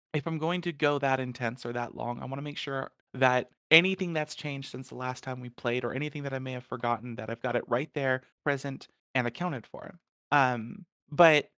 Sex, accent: male, American